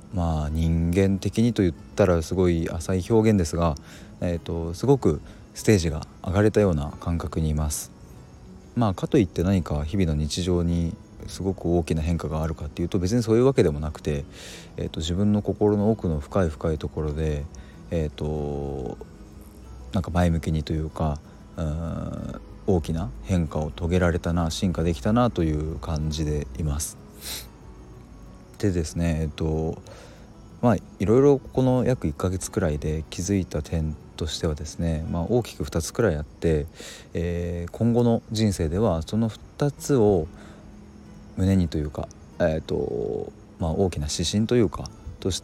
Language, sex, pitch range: Japanese, male, 80-100 Hz